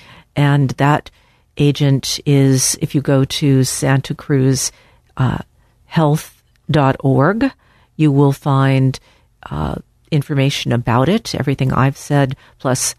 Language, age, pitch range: English, 50-69, 130-165 Hz